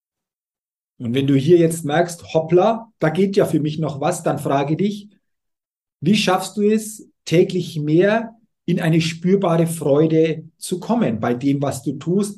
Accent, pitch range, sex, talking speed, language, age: German, 150-195 Hz, male, 165 wpm, German, 50-69